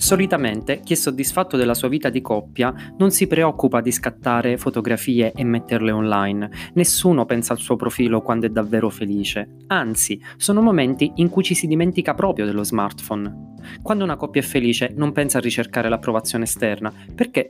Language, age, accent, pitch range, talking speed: Italian, 20-39, native, 110-155 Hz, 170 wpm